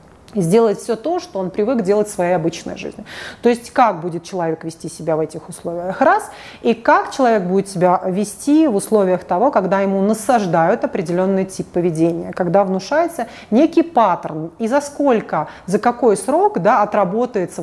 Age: 30-49